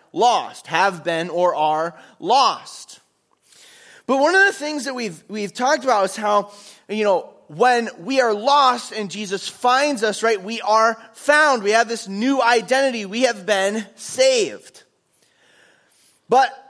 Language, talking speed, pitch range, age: English, 150 wpm, 195-265 Hz, 20-39